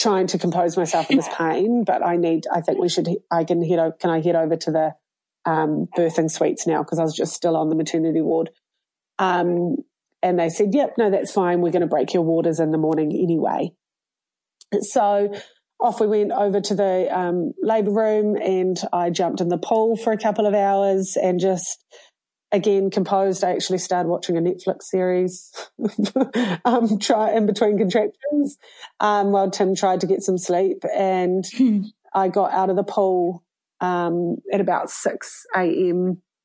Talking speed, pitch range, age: 180 wpm, 175-210 Hz, 30-49